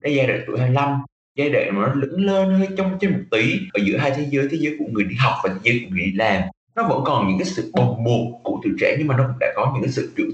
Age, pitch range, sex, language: 20-39, 115-150 Hz, male, Vietnamese